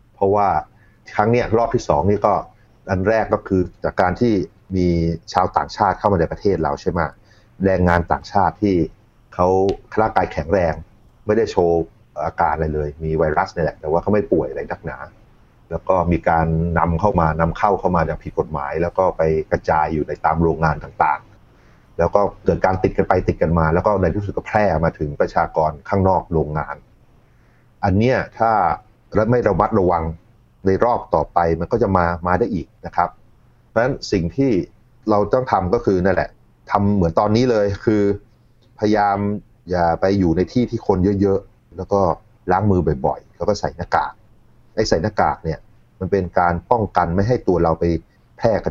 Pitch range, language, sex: 85-105 Hz, Thai, male